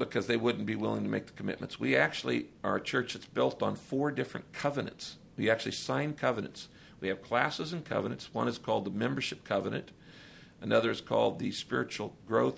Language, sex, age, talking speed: English, male, 50-69, 195 wpm